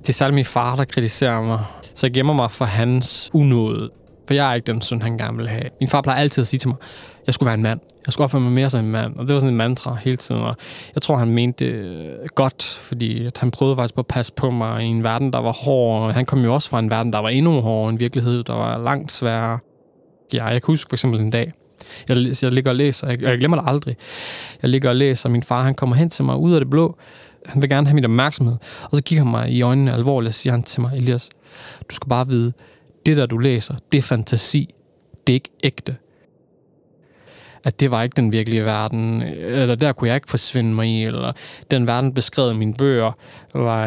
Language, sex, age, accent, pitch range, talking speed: Danish, male, 20-39, native, 115-135 Hz, 250 wpm